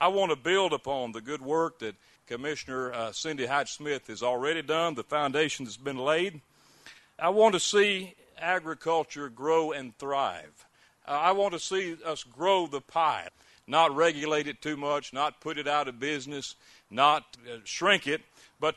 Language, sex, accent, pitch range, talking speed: English, male, American, 130-165 Hz, 175 wpm